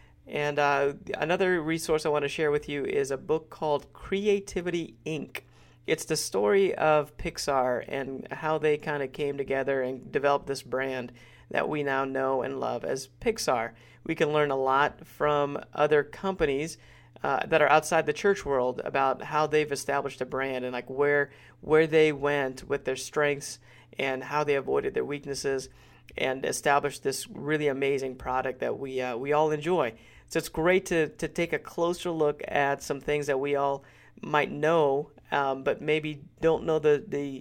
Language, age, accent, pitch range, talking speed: English, 40-59, American, 135-155 Hz, 180 wpm